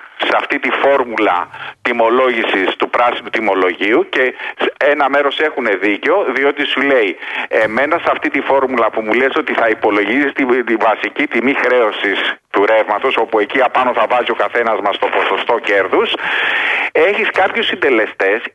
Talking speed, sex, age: 150 wpm, male, 50-69